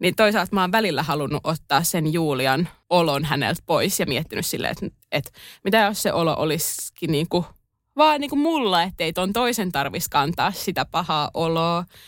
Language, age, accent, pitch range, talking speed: Finnish, 20-39, native, 165-215 Hz, 185 wpm